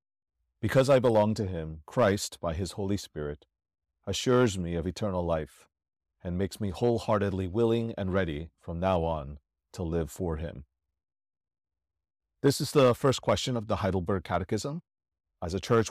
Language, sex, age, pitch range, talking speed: English, male, 40-59, 85-110 Hz, 155 wpm